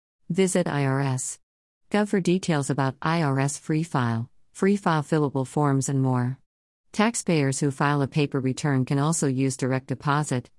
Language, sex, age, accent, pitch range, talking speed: English, female, 50-69, American, 135-155 Hz, 140 wpm